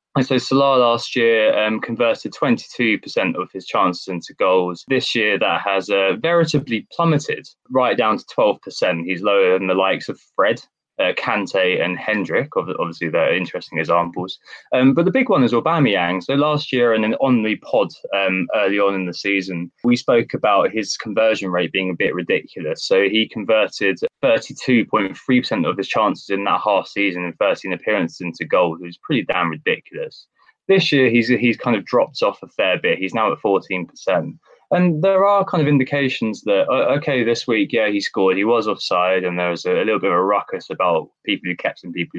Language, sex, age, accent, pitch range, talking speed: English, male, 20-39, British, 95-135 Hz, 200 wpm